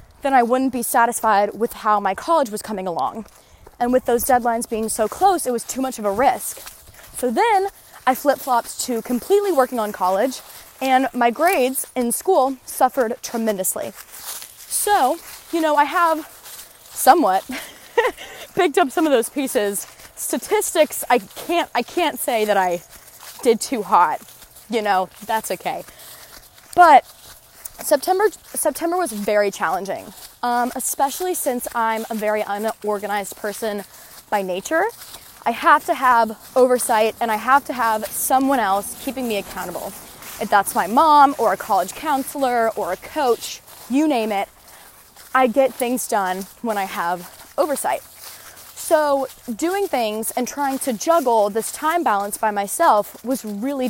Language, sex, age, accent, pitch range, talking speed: English, female, 20-39, American, 220-285 Hz, 150 wpm